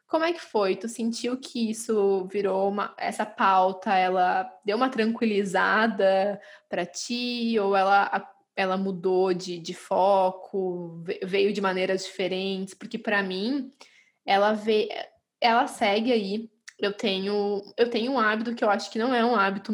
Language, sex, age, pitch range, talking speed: Portuguese, female, 10-29, 200-255 Hz, 155 wpm